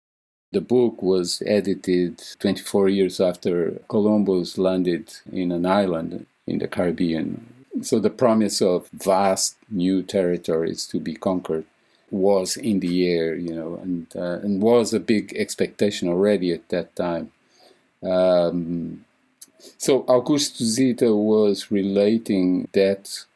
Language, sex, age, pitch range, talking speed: English, male, 50-69, 90-105 Hz, 125 wpm